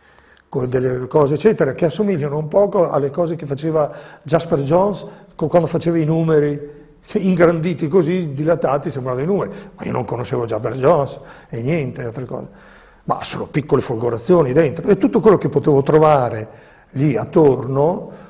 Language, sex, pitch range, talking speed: Italian, male, 130-170 Hz, 155 wpm